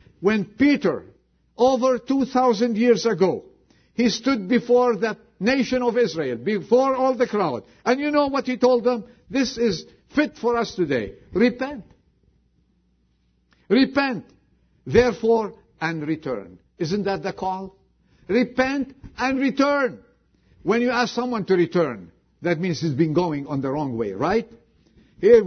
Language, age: English, 50-69